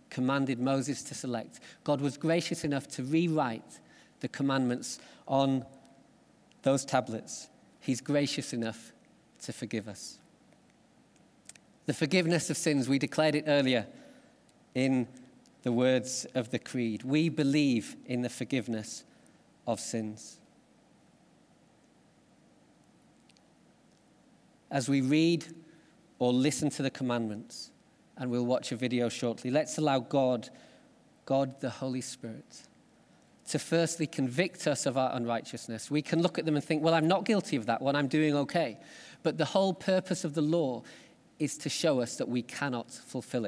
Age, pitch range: 40-59, 125-155 Hz